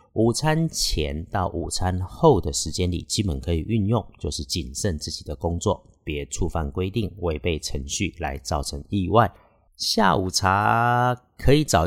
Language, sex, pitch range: Chinese, male, 80-110 Hz